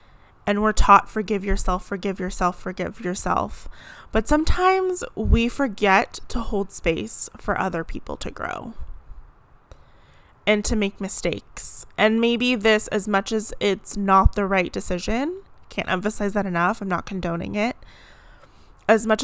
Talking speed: 145 wpm